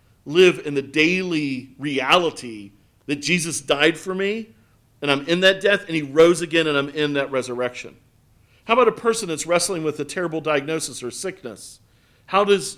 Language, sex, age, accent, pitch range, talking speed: English, male, 40-59, American, 120-165 Hz, 180 wpm